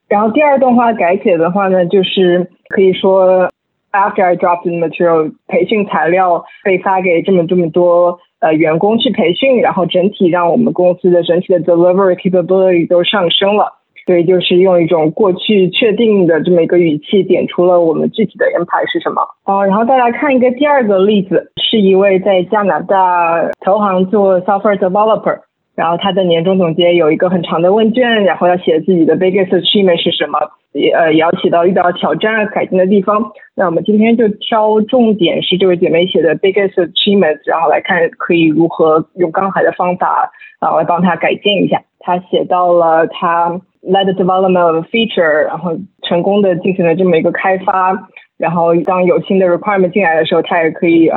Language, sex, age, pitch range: Chinese, female, 20-39, 175-200 Hz